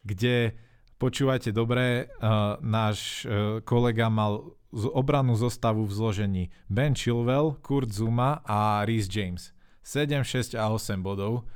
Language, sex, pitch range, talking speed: Slovak, male, 110-125 Hz, 130 wpm